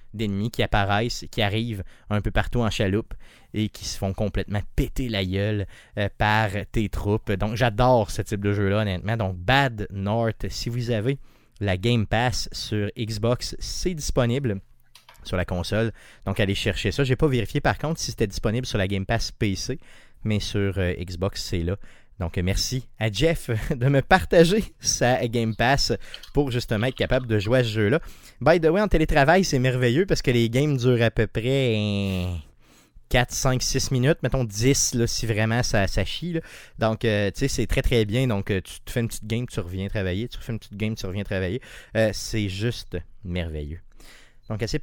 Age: 30-49